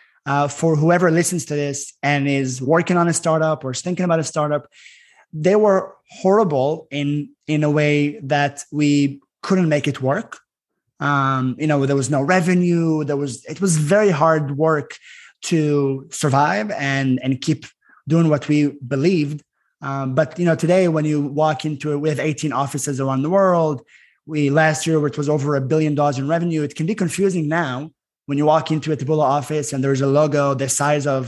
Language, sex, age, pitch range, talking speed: English, male, 20-39, 140-165 Hz, 190 wpm